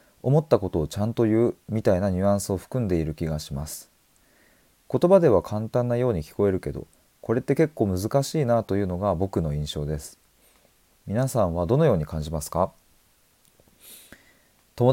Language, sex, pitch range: Japanese, male, 85-125 Hz